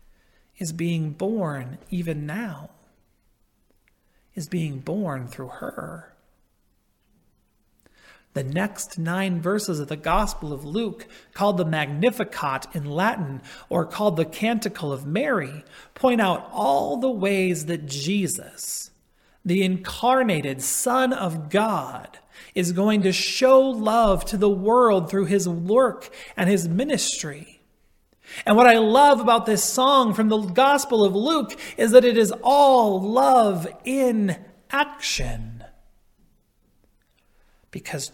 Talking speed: 120 wpm